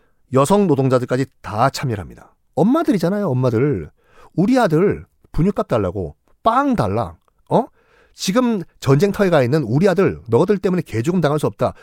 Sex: male